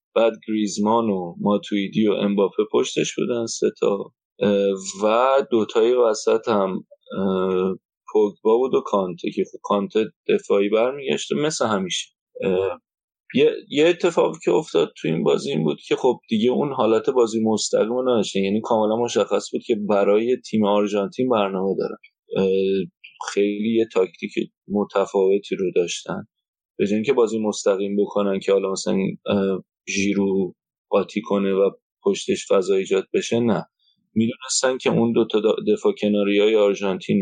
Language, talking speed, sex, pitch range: Persian, 135 wpm, male, 100-125 Hz